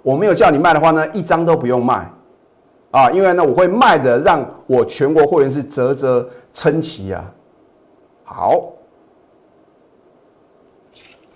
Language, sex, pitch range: Chinese, male, 130-180 Hz